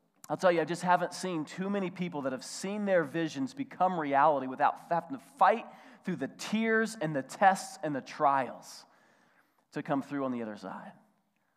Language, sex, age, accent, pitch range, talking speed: English, male, 30-49, American, 130-175 Hz, 190 wpm